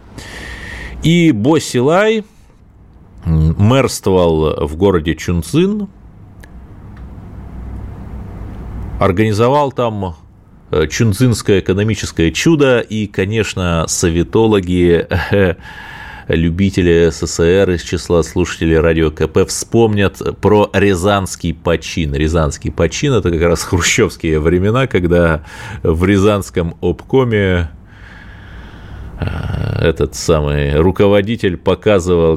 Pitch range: 85-105 Hz